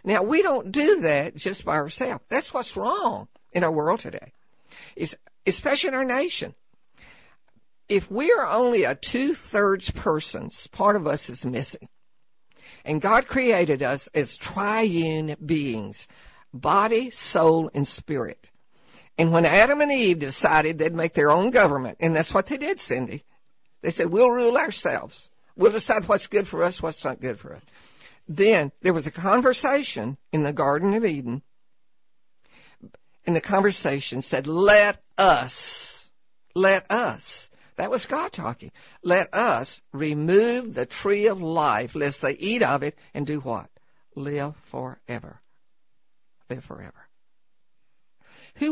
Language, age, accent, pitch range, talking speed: English, 60-79, American, 145-220 Hz, 145 wpm